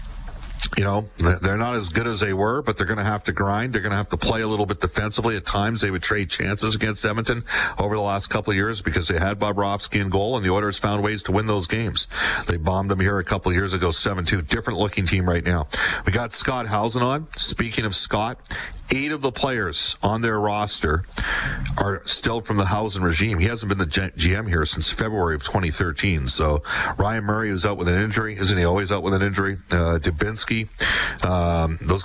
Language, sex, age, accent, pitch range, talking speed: English, male, 40-59, American, 90-105 Hz, 225 wpm